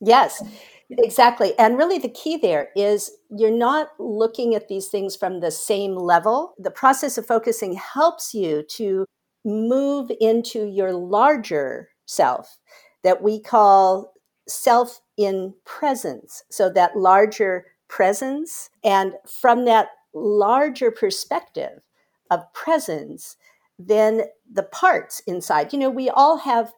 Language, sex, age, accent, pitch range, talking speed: English, female, 50-69, American, 185-255 Hz, 125 wpm